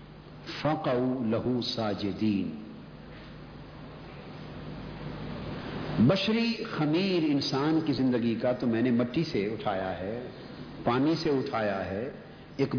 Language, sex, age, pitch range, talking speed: Urdu, male, 60-79, 130-175 Hz, 100 wpm